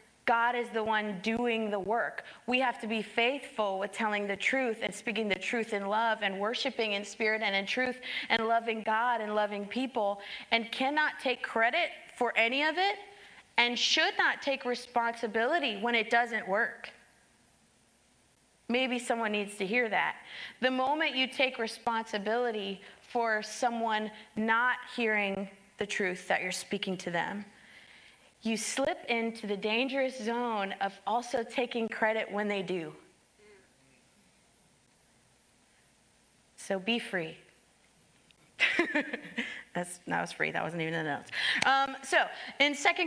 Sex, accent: female, American